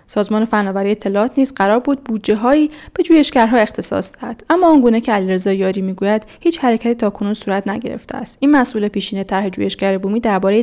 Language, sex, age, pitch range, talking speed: Persian, female, 10-29, 205-255 Hz, 175 wpm